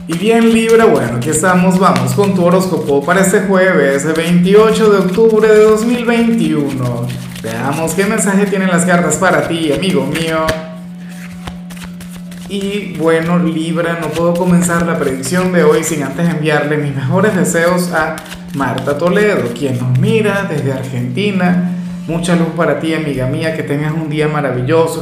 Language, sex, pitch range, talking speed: Spanish, male, 155-185 Hz, 150 wpm